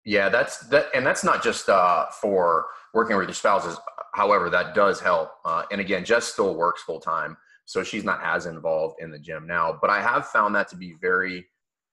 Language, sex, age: English, male, 30-49